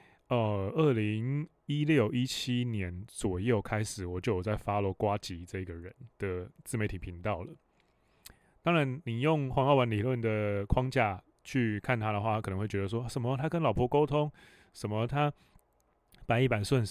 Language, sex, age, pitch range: Chinese, male, 20-39, 100-125 Hz